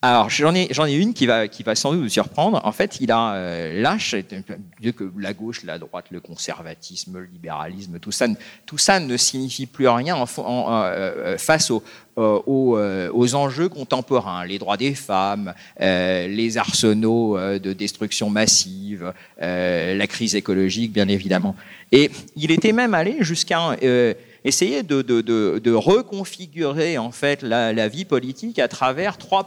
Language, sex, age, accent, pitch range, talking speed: French, male, 50-69, French, 105-145 Hz, 175 wpm